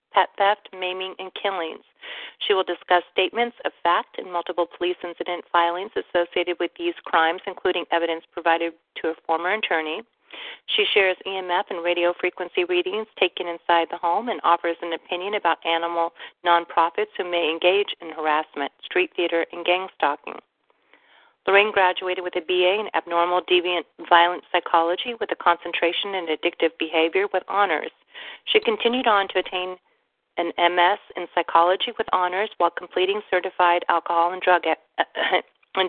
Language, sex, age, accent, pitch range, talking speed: English, female, 40-59, American, 170-200 Hz, 150 wpm